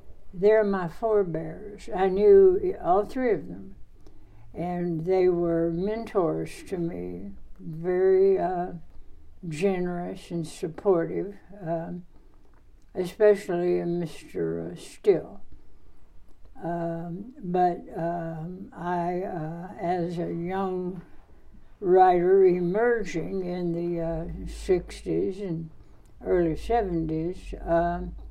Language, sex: English, female